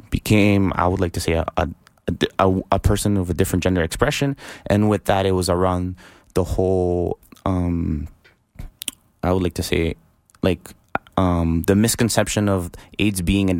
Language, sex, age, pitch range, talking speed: English, male, 20-39, 85-100 Hz, 170 wpm